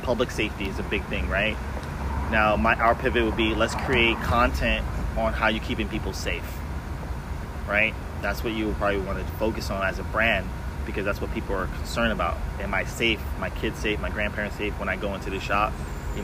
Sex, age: male, 20-39